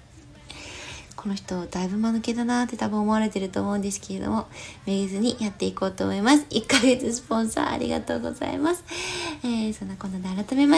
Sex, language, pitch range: female, Japanese, 210-275 Hz